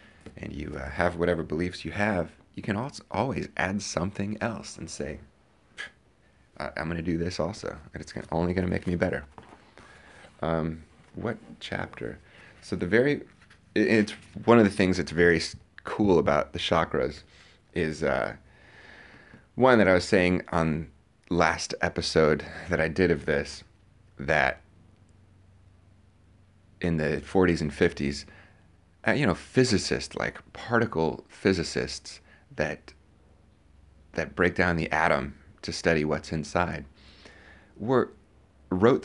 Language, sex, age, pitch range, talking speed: English, male, 30-49, 75-95 Hz, 135 wpm